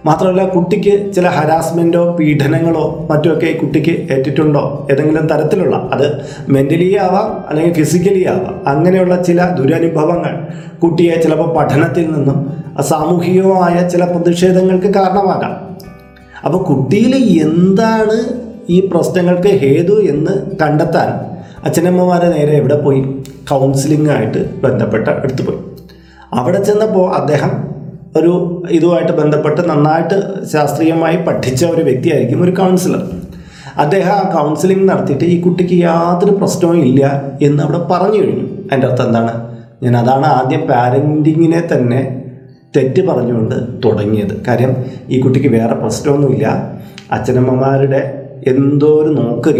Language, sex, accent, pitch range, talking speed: Malayalam, male, native, 140-180 Hz, 105 wpm